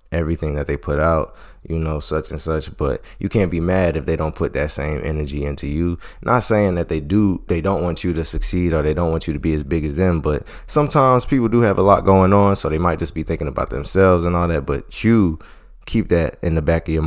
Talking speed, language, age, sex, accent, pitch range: 265 wpm, English, 20-39, male, American, 80-95 Hz